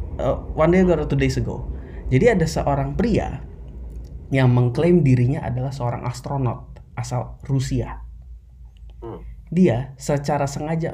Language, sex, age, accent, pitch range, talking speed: Indonesian, male, 20-39, native, 115-140 Hz, 120 wpm